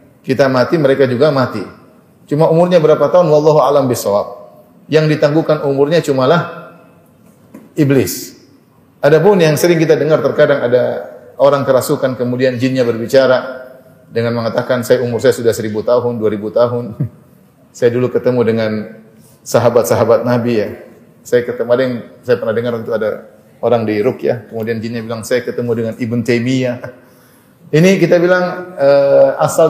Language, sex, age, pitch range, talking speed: Indonesian, male, 30-49, 120-155 Hz, 145 wpm